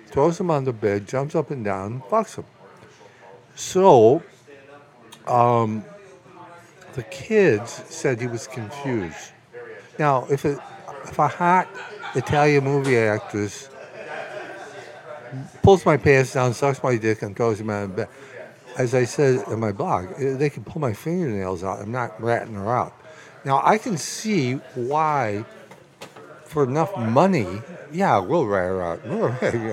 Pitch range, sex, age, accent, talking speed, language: 110-155 Hz, male, 60-79, American, 145 wpm, English